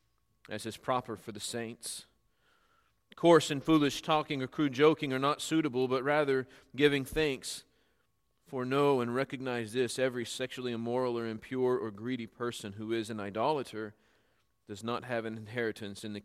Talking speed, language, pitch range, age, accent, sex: 165 wpm, English, 110-135 Hz, 40-59, American, male